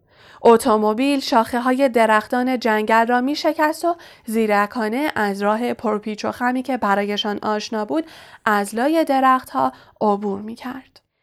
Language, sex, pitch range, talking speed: Persian, female, 210-255 Hz, 140 wpm